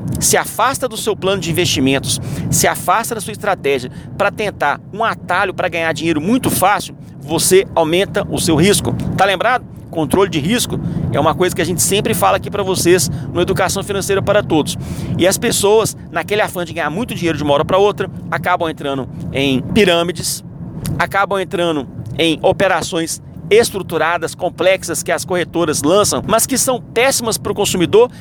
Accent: Brazilian